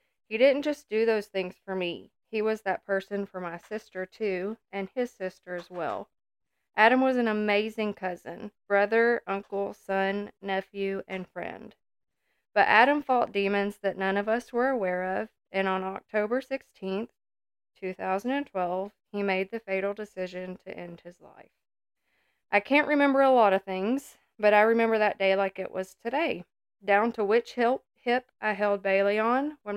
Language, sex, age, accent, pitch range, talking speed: English, female, 20-39, American, 190-230 Hz, 165 wpm